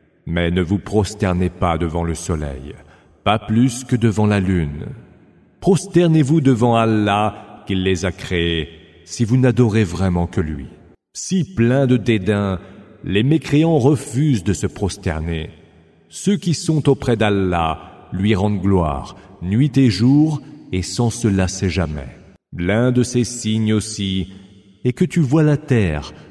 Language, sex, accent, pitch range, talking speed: English, male, French, 90-120 Hz, 145 wpm